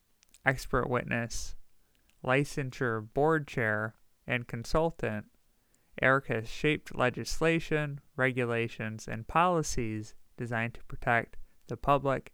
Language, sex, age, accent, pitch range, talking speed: English, male, 20-39, American, 110-135 Hz, 90 wpm